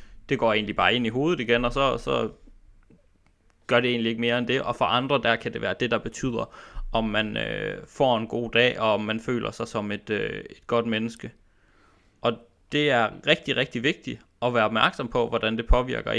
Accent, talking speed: native, 220 wpm